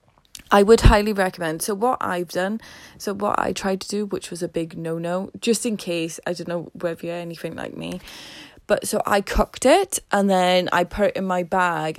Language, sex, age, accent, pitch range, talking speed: English, female, 10-29, British, 165-190 Hz, 215 wpm